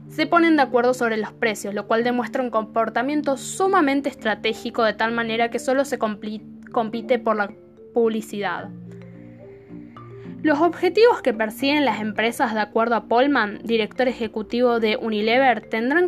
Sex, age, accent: female, 10-29, Argentinian